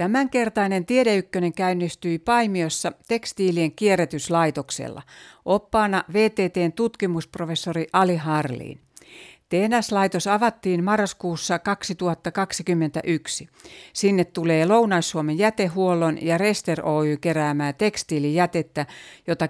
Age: 60-79